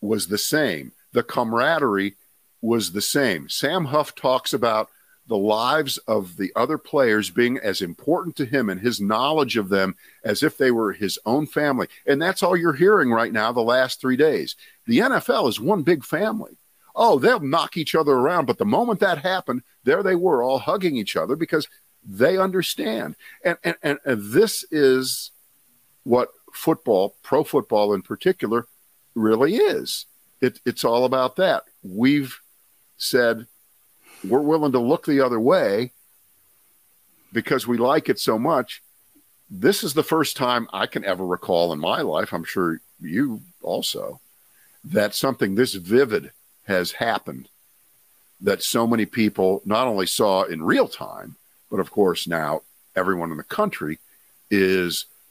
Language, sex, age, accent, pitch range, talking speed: English, male, 50-69, American, 105-155 Hz, 160 wpm